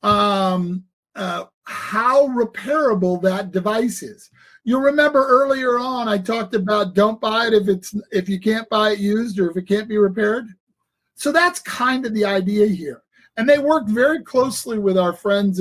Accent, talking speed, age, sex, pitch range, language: American, 175 wpm, 50-69, male, 195-245 Hz, English